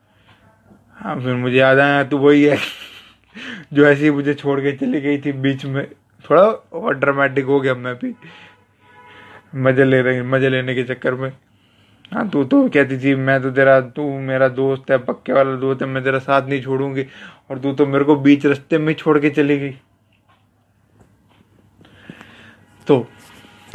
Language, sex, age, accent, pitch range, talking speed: English, male, 20-39, Indian, 115-145 Hz, 160 wpm